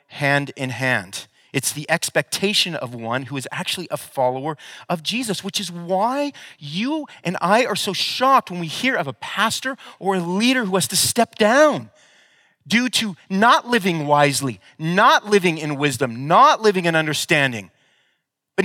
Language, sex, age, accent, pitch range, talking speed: English, male, 30-49, American, 150-215 Hz, 160 wpm